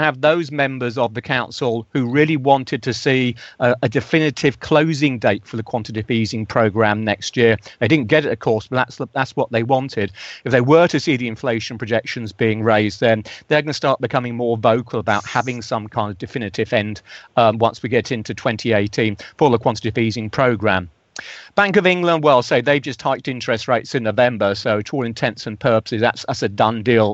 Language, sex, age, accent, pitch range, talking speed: English, male, 40-59, British, 110-135 Hz, 210 wpm